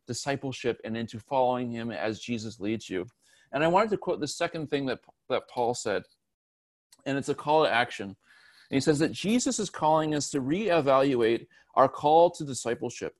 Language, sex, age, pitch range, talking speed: English, male, 40-59, 125-160 Hz, 180 wpm